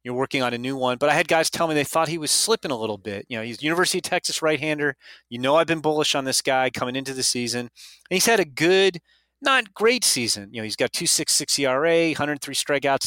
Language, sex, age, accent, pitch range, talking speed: English, male, 30-49, American, 130-160 Hz, 260 wpm